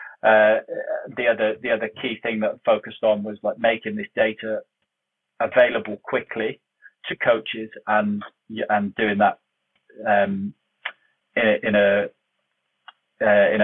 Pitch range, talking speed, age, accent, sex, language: 100-110 Hz, 125 wpm, 30-49, British, male, English